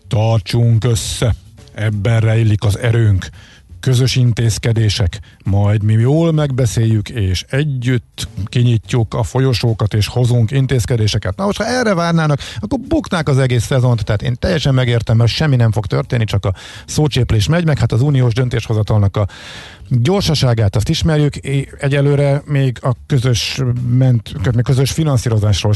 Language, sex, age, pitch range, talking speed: Hungarian, male, 50-69, 110-135 Hz, 135 wpm